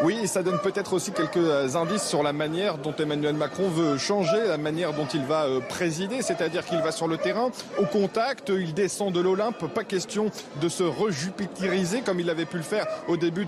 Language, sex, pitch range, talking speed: French, male, 160-200 Hz, 205 wpm